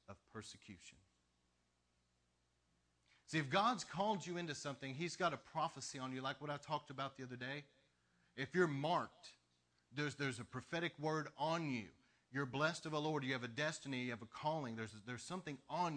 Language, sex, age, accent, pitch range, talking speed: English, male, 40-59, American, 120-155 Hz, 190 wpm